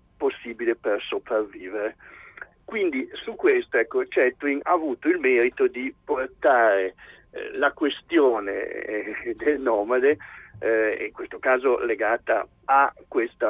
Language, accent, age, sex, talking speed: Italian, native, 50-69, male, 120 wpm